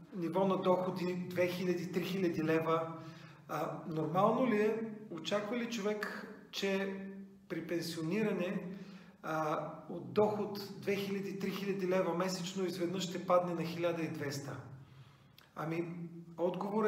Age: 40-59